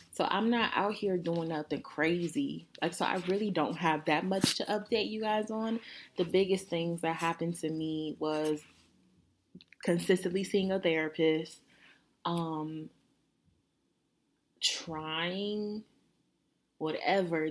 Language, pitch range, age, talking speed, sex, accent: English, 155-180 Hz, 20-39, 125 wpm, female, American